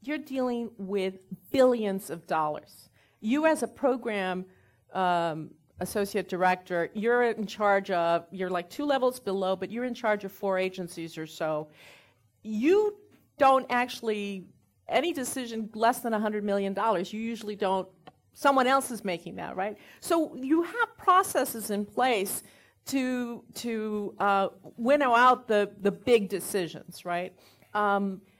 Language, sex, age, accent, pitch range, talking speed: English, female, 40-59, American, 190-250 Hz, 140 wpm